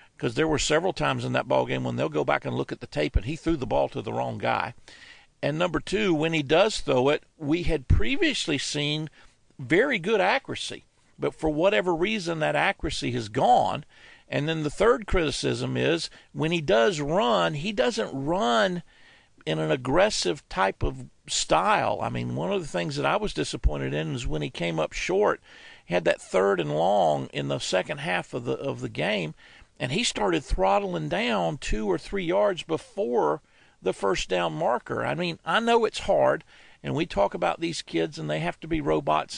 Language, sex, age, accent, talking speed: English, male, 50-69, American, 200 wpm